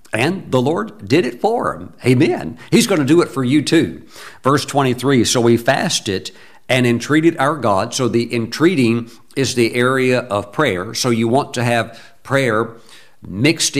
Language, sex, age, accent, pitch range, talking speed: English, male, 60-79, American, 115-140 Hz, 175 wpm